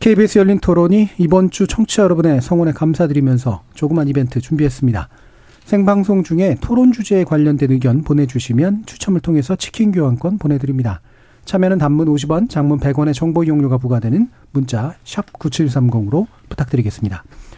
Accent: native